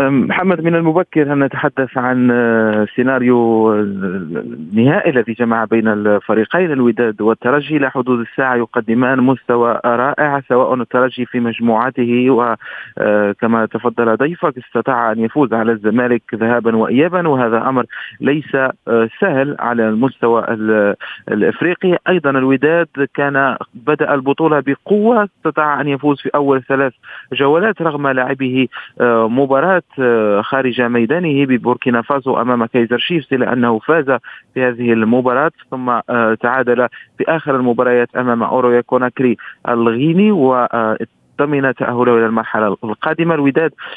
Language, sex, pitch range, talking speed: Arabic, male, 120-145 Hz, 115 wpm